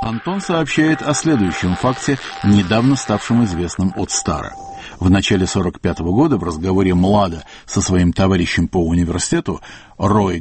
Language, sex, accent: Russian, male, native